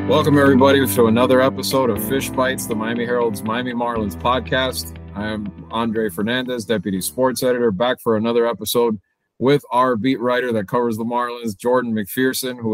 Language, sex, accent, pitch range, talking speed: English, male, American, 115-140 Hz, 165 wpm